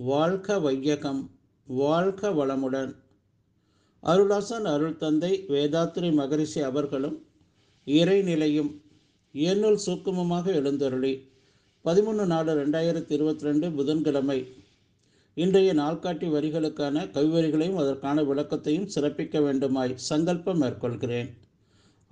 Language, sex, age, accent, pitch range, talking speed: Tamil, male, 50-69, native, 130-160 Hz, 85 wpm